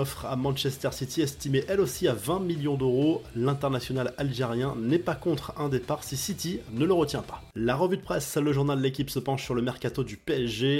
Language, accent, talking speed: French, French, 215 wpm